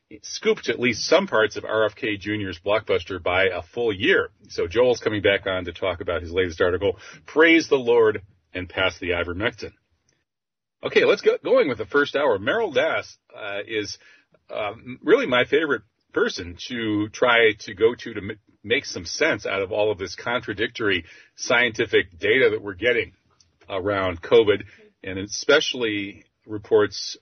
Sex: male